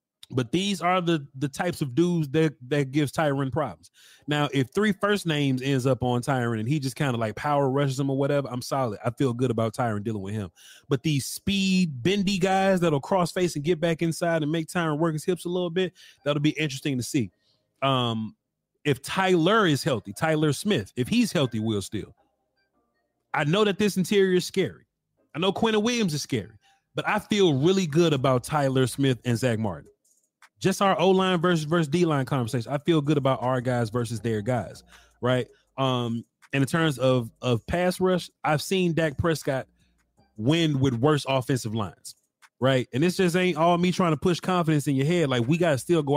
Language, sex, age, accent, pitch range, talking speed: English, male, 30-49, American, 130-175 Hz, 205 wpm